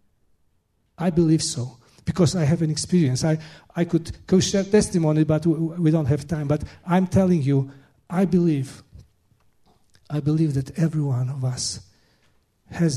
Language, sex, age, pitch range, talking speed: English, male, 40-59, 120-170 Hz, 155 wpm